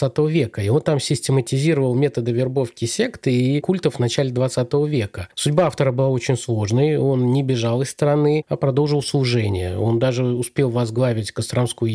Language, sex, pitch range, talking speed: Russian, male, 115-145 Hz, 160 wpm